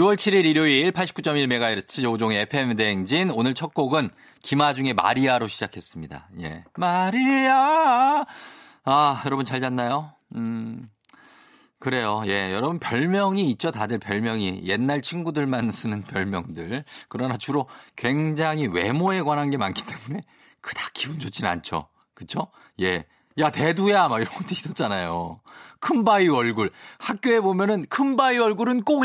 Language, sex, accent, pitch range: Korean, male, native, 105-160 Hz